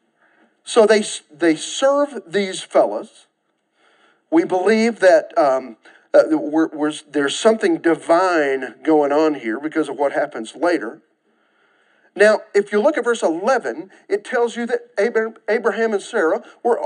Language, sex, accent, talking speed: English, male, American, 130 wpm